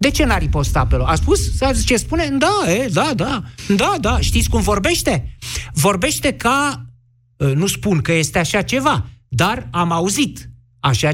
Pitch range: 125-190 Hz